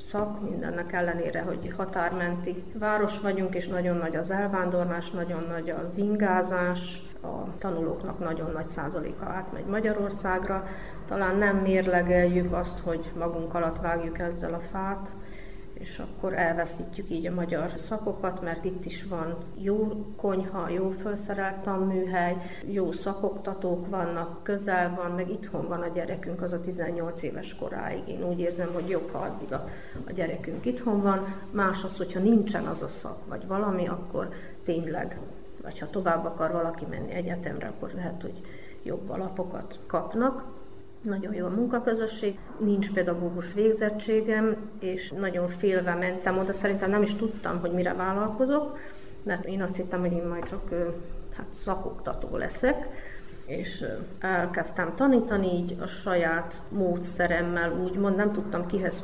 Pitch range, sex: 175-200 Hz, female